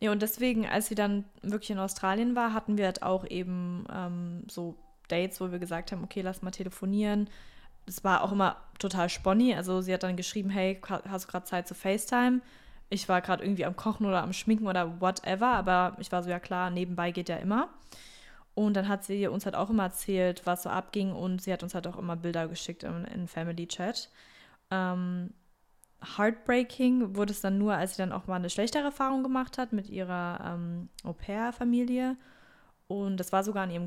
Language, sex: German, female